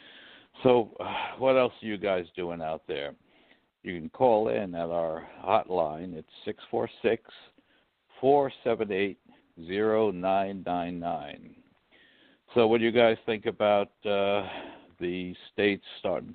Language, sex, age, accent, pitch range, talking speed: English, male, 60-79, American, 85-100 Hz, 115 wpm